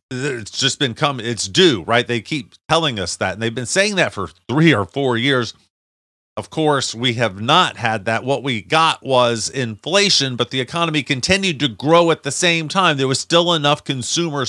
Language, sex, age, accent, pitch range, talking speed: English, male, 40-59, American, 115-145 Hz, 205 wpm